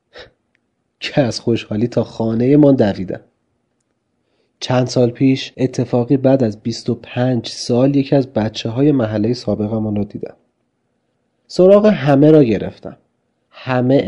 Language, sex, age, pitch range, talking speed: Persian, male, 40-59, 130-195 Hz, 120 wpm